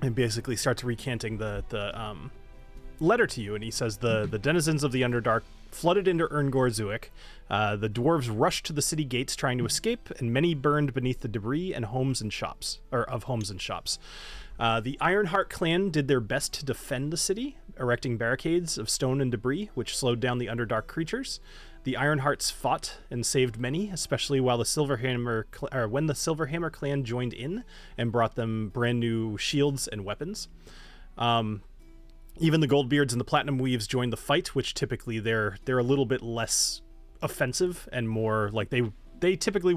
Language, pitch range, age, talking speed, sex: English, 110-145 Hz, 30-49, 185 wpm, male